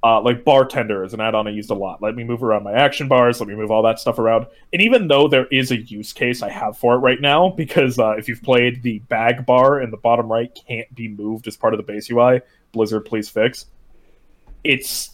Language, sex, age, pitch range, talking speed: English, male, 20-39, 110-135 Hz, 250 wpm